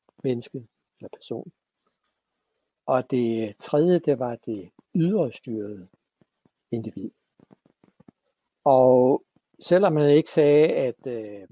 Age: 60-79